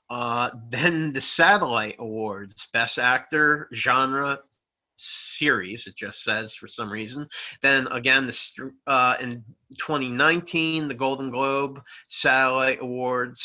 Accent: American